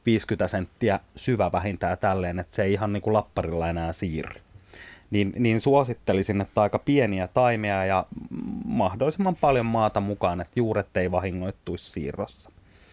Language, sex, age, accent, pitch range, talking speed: Finnish, male, 30-49, native, 90-115 Hz, 145 wpm